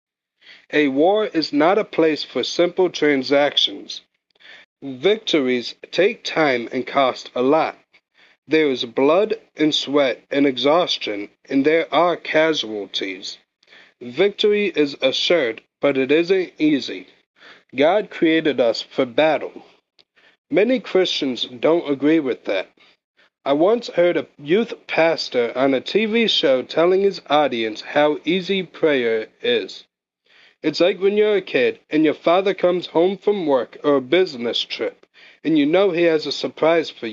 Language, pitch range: English, 140-200 Hz